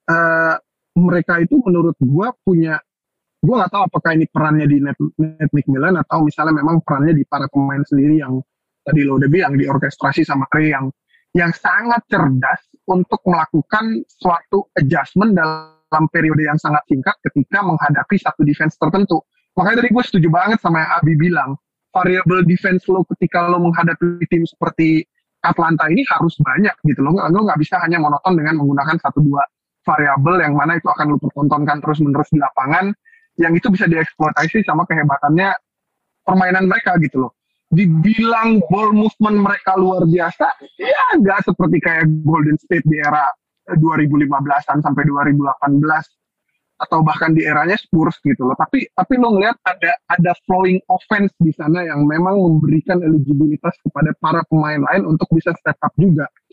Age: 20-39